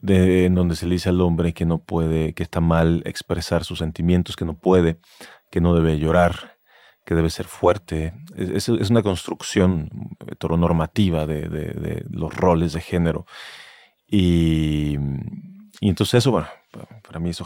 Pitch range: 85-95 Hz